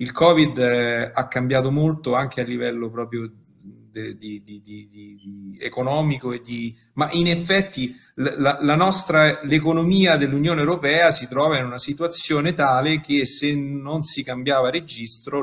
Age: 40-59